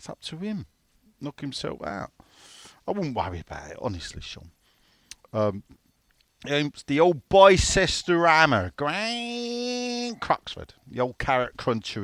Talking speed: 130 wpm